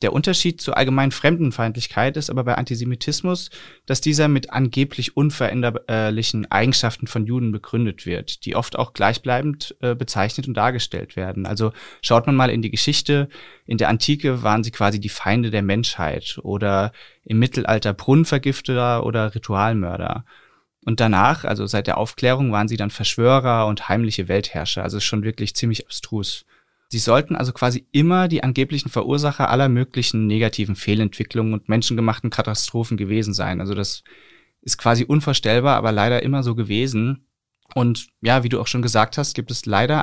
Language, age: German, 30-49